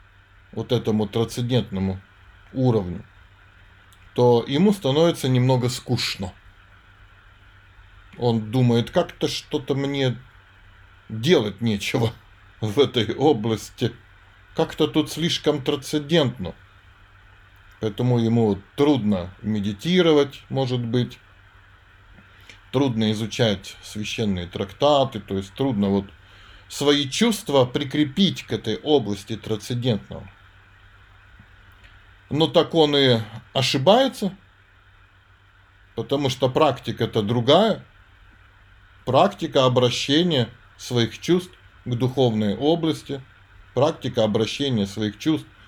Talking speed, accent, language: 85 wpm, native, Russian